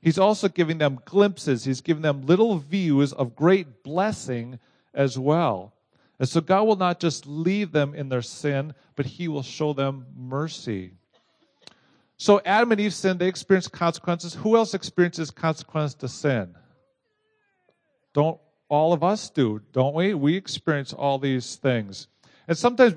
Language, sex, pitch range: English, male, 130-175 Hz